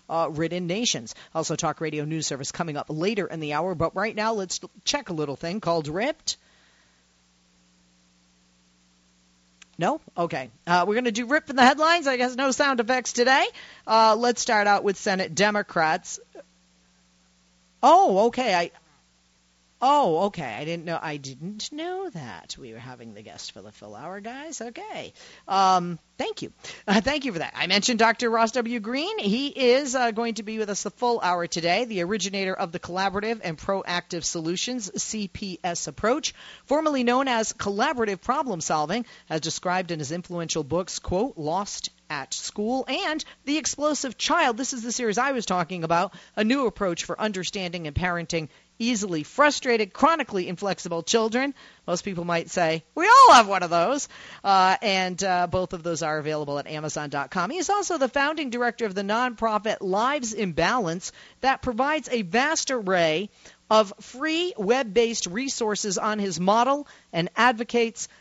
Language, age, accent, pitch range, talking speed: English, 40-59, American, 165-240 Hz, 170 wpm